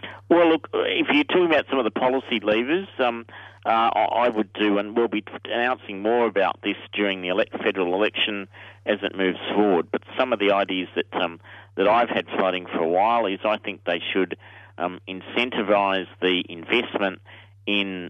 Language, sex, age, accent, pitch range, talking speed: English, male, 50-69, Australian, 95-110 Hz, 185 wpm